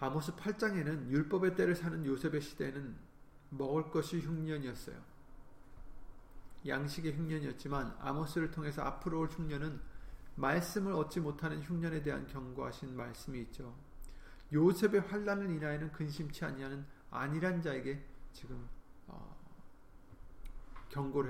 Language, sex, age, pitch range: Korean, male, 40-59, 120-155 Hz